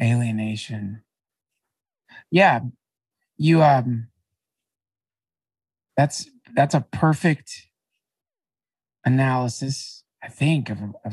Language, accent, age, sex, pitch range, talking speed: English, American, 50-69, male, 125-165 Hz, 70 wpm